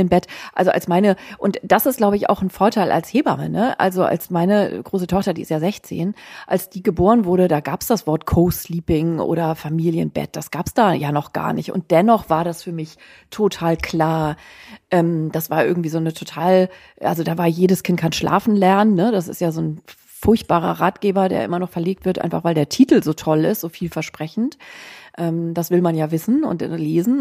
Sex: female